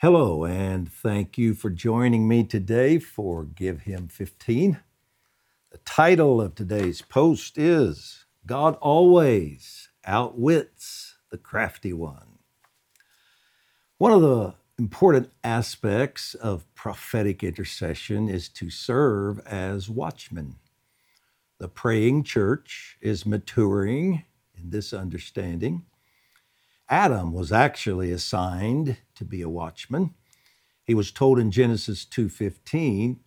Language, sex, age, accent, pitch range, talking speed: English, male, 60-79, American, 95-120 Hz, 105 wpm